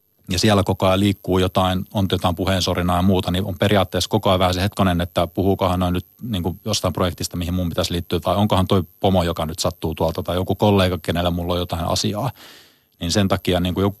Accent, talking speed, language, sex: native, 220 wpm, Finnish, male